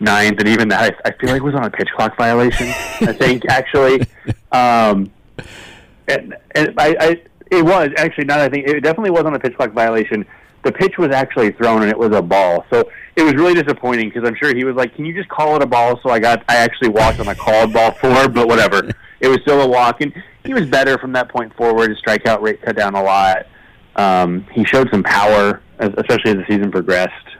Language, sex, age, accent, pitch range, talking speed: English, male, 30-49, American, 105-135 Hz, 235 wpm